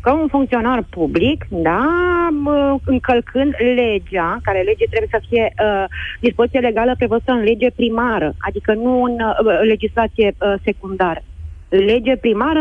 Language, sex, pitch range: Romanian, female, 240-335 Hz